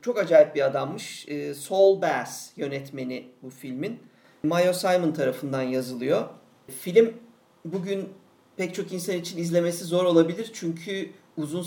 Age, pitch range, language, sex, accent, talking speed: 50-69, 145-175 Hz, Turkish, male, native, 125 wpm